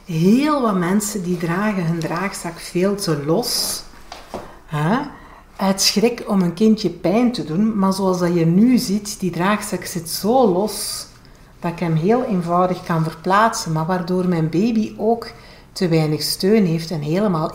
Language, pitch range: Dutch, 170-210 Hz